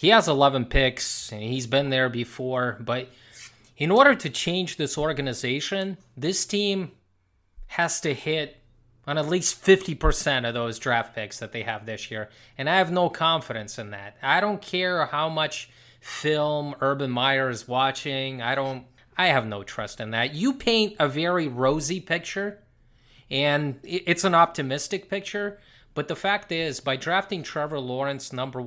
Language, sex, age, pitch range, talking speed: English, male, 20-39, 125-180 Hz, 165 wpm